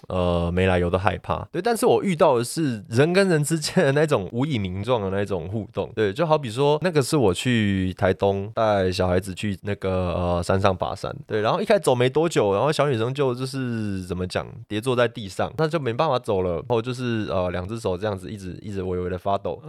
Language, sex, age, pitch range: Chinese, male, 20-39, 100-140 Hz